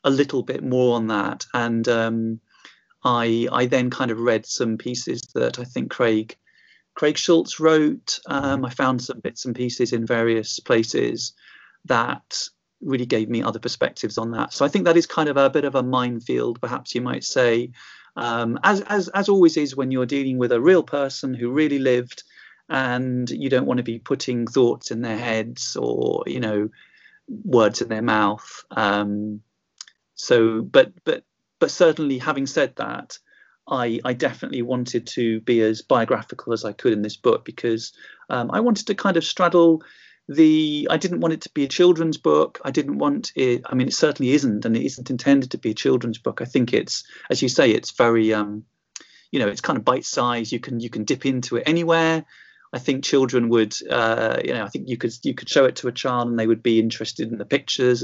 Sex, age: male, 40-59